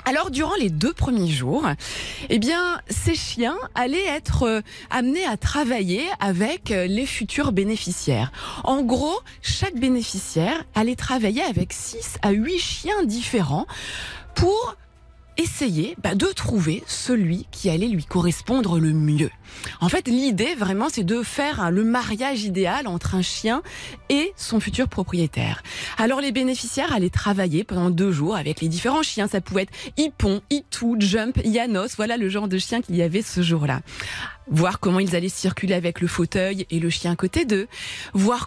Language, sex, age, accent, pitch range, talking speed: French, female, 20-39, French, 185-250 Hz, 160 wpm